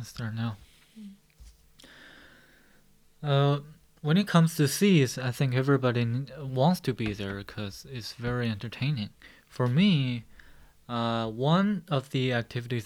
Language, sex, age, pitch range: Chinese, male, 20-39, 115-150 Hz